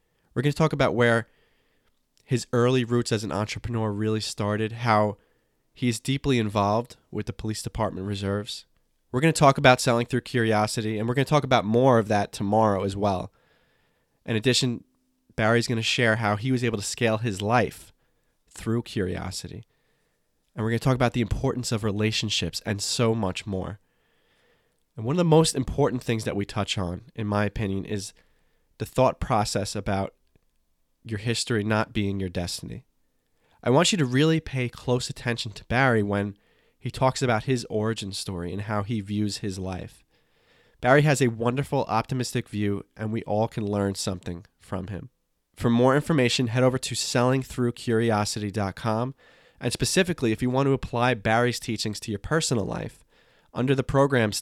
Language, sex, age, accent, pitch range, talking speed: English, male, 20-39, American, 105-125 Hz, 175 wpm